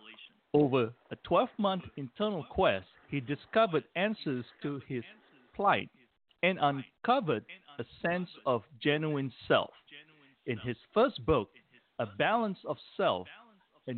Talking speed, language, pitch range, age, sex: 115 wpm, English, 125-170 Hz, 50-69, male